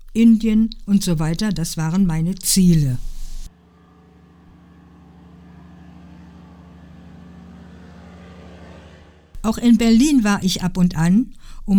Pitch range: 150-230 Hz